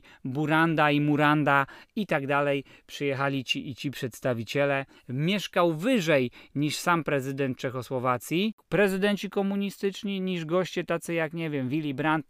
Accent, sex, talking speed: native, male, 130 wpm